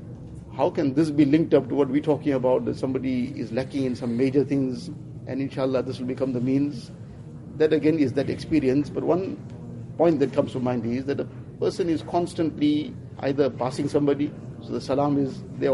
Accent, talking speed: Indian, 200 wpm